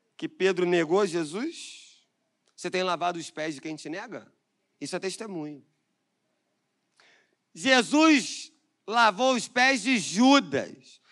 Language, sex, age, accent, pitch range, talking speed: Portuguese, male, 30-49, Brazilian, 190-270 Hz, 120 wpm